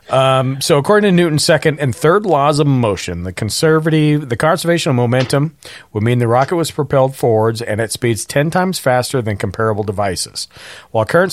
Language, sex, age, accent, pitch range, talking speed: English, male, 40-59, American, 115-145 Hz, 185 wpm